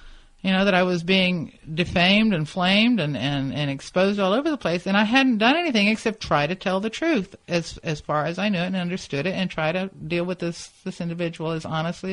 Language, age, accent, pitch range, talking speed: English, 50-69, American, 145-190 Hz, 235 wpm